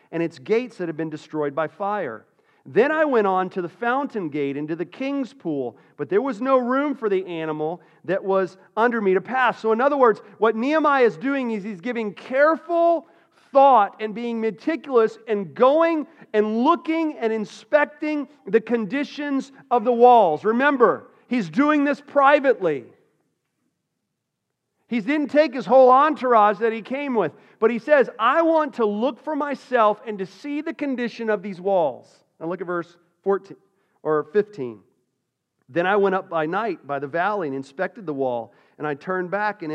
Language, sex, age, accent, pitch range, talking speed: English, male, 40-59, American, 175-260 Hz, 180 wpm